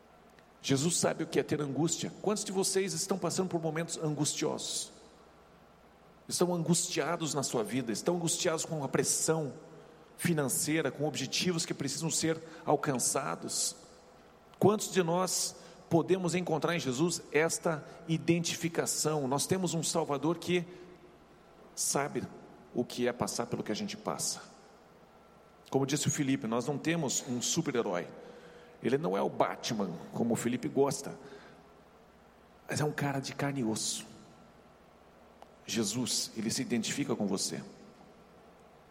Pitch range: 145-180 Hz